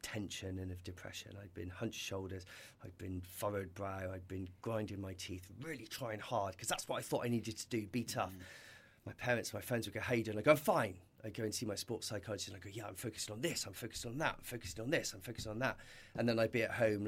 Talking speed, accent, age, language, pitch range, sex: 270 wpm, British, 30-49, English, 105-140 Hz, male